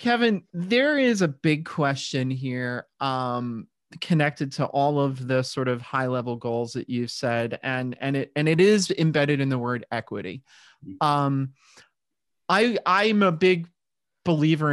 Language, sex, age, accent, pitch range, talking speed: English, male, 30-49, American, 130-170 Hz, 150 wpm